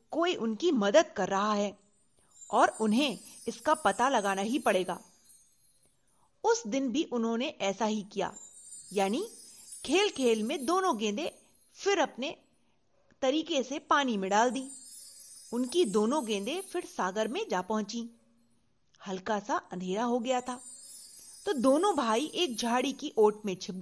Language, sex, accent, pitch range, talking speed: Hindi, female, native, 205-300 Hz, 145 wpm